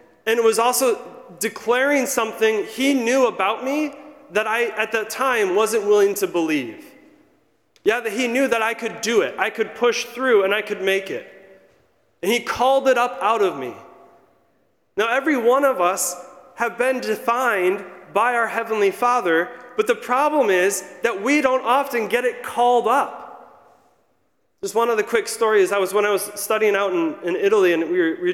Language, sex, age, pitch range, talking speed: English, male, 30-49, 180-260 Hz, 190 wpm